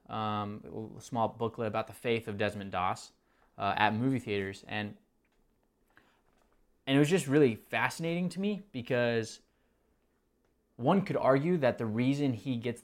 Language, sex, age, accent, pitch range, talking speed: English, male, 20-39, American, 105-125 Hz, 150 wpm